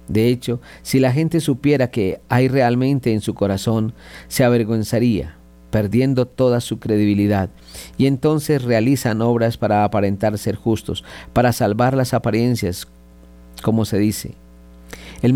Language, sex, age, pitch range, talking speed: Spanish, male, 50-69, 100-130 Hz, 135 wpm